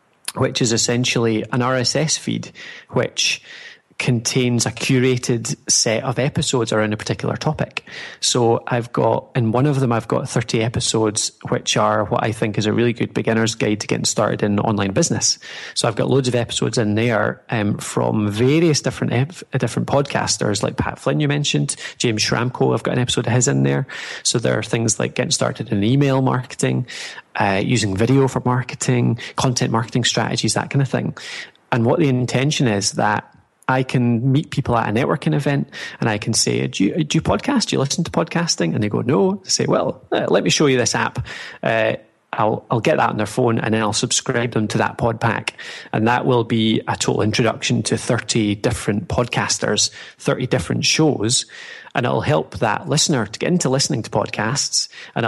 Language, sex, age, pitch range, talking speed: English, male, 20-39, 110-135 Hz, 195 wpm